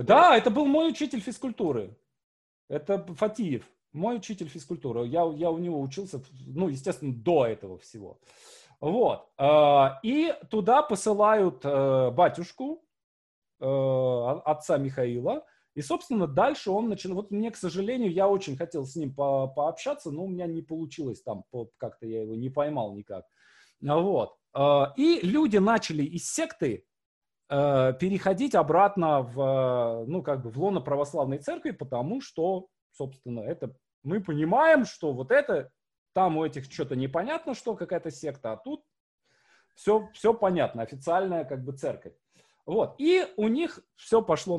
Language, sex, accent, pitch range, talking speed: Russian, male, native, 140-215 Hz, 140 wpm